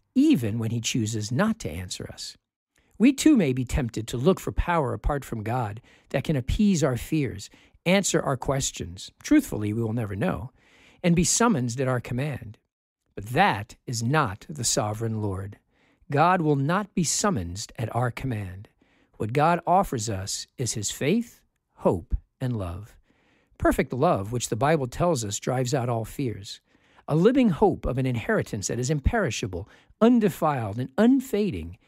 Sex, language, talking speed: male, English, 165 wpm